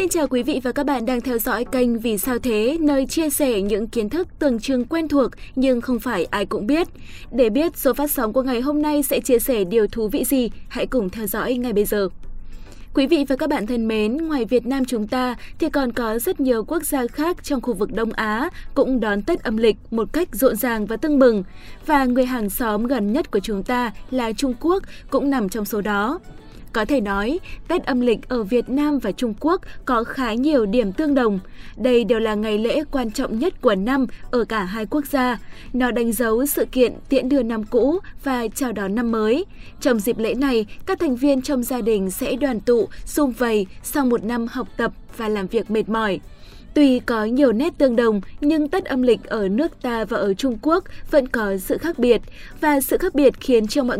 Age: 20-39